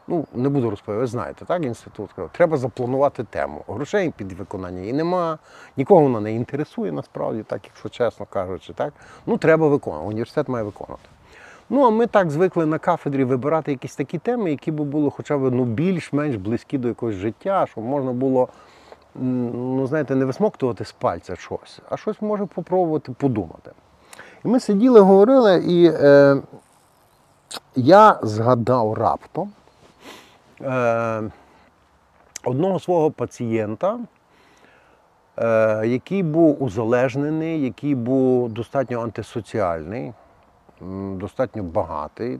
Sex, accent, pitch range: male, native, 115-160 Hz